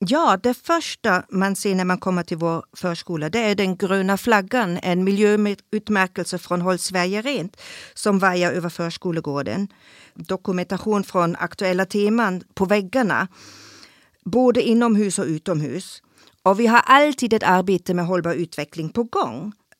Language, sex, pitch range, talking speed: Swedish, female, 180-220 Hz, 140 wpm